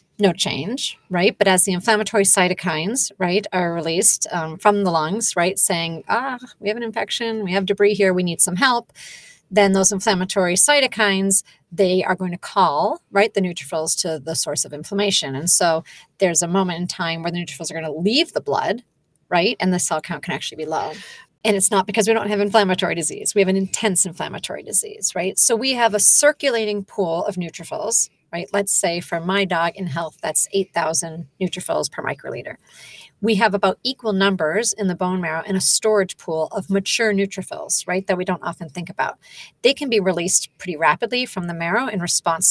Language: English